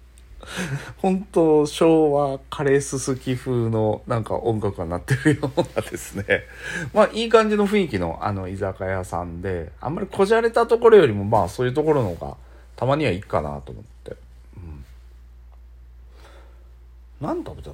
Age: 40-59